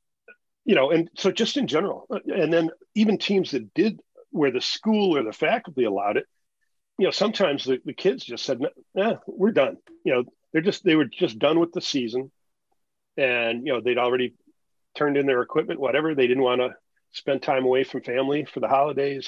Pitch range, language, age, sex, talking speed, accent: 130-190 Hz, English, 40-59, male, 200 wpm, American